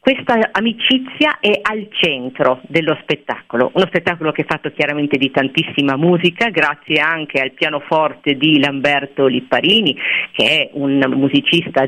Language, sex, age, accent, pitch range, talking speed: Italian, female, 50-69, native, 140-180 Hz, 135 wpm